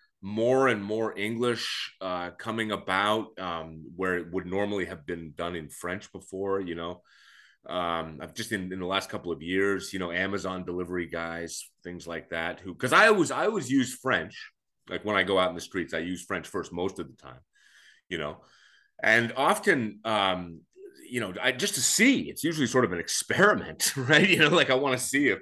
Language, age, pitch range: English, 30-49, 90-135 Hz